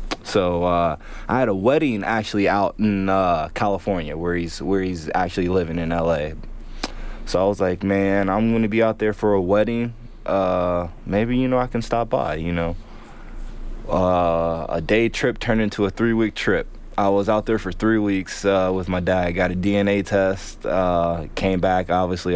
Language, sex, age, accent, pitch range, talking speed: English, male, 20-39, American, 85-110 Hz, 190 wpm